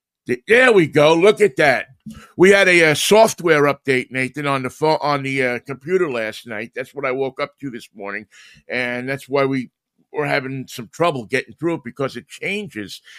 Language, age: English, 50-69